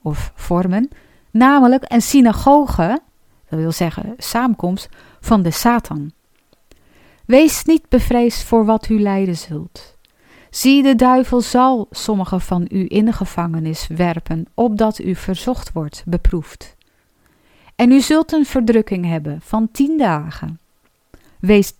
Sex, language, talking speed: female, Dutch, 125 wpm